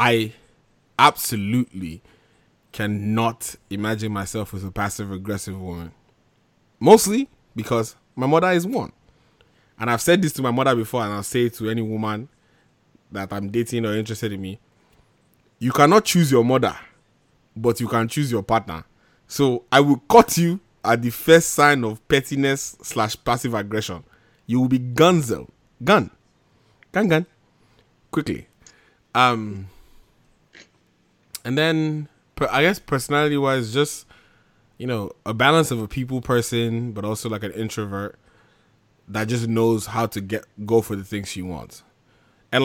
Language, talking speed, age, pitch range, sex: English, 145 wpm, 20-39, 105-125 Hz, male